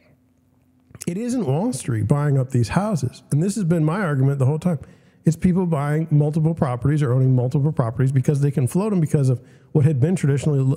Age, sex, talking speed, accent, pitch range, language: 50-69, male, 205 wpm, American, 125-160 Hz, English